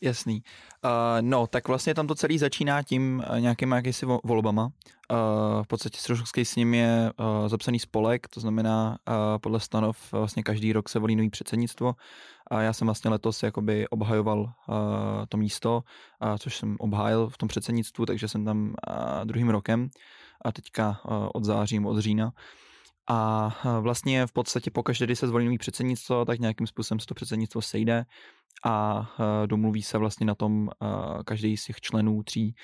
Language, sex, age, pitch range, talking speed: Czech, male, 20-39, 110-115 Hz, 155 wpm